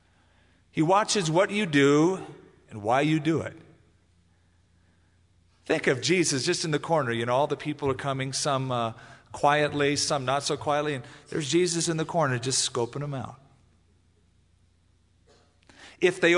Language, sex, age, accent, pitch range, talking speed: English, male, 40-59, American, 95-160 Hz, 160 wpm